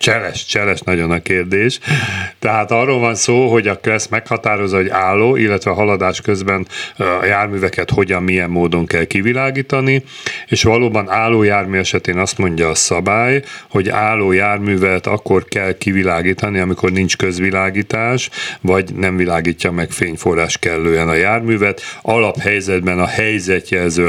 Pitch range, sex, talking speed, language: 90-110 Hz, male, 135 wpm, Hungarian